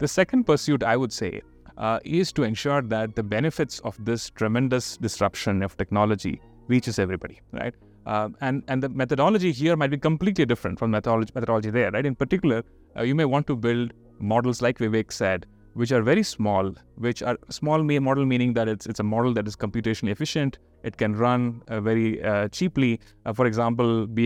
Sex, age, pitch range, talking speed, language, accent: male, 30-49, 110-135 Hz, 195 wpm, English, Indian